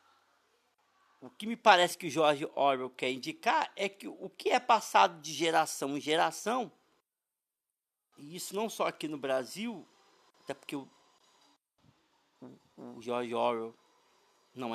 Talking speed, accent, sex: 135 wpm, Brazilian, male